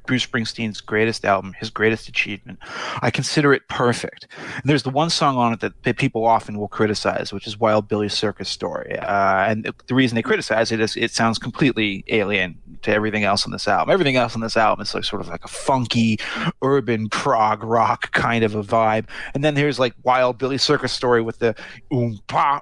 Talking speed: 205 wpm